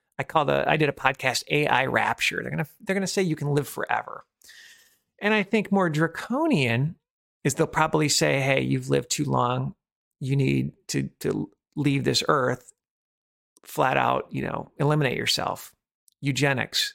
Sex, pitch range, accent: male, 130-160 Hz, American